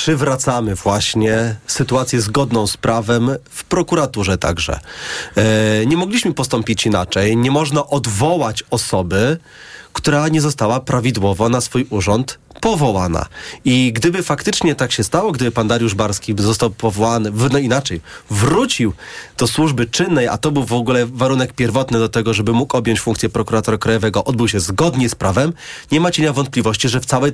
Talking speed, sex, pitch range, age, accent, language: 155 wpm, male, 115-155 Hz, 30-49, native, Polish